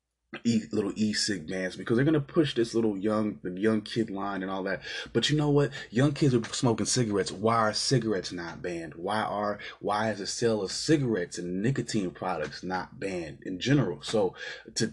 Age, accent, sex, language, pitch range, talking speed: 20-39, American, male, English, 95-110 Hz, 200 wpm